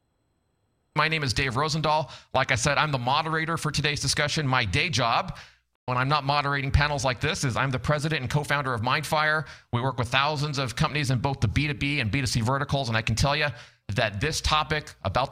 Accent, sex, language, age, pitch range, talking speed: American, male, English, 40-59, 120-150 Hz, 210 wpm